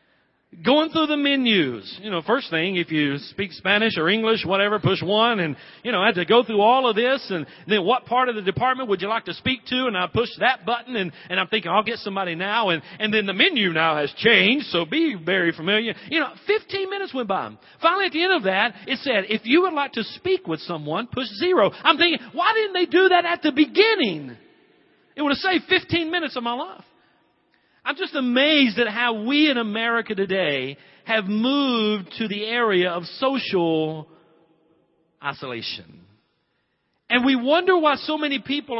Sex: male